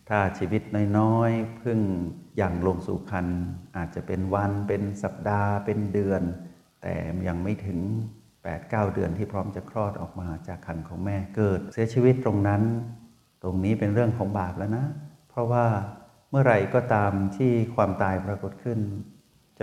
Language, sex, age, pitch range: Thai, male, 60-79, 95-110 Hz